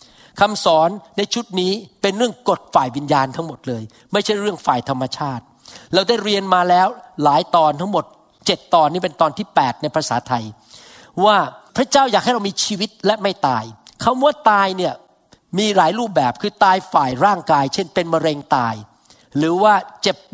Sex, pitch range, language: male, 160-235 Hz, Thai